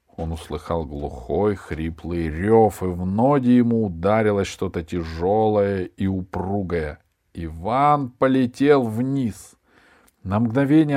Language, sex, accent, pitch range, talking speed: Russian, male, native, 90-135 Hz, 105 wpm